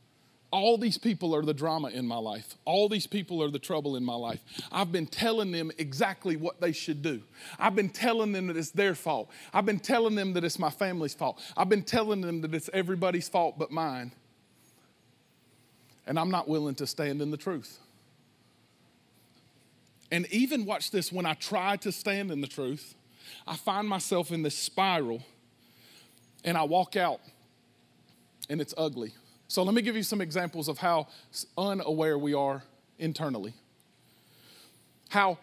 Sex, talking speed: male, 175 wpm